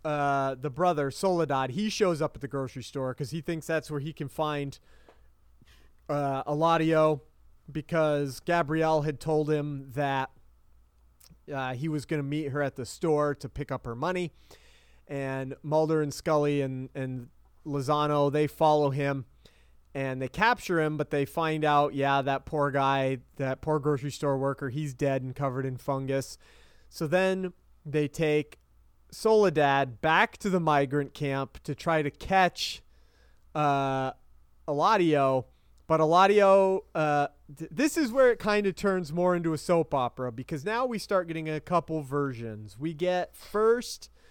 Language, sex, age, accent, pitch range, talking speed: English, male, 30-49, American, 135-170 Hz, 160 wpm